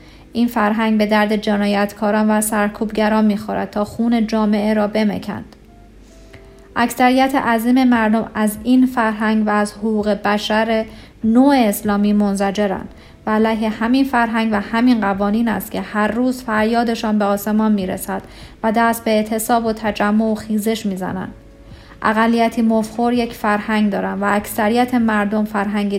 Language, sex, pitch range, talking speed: Persian, female, 205-230 Hz, 140 wpm